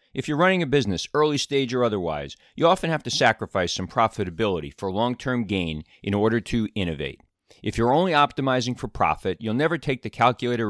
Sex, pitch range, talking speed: male, 90-125 Hz, 190 wpm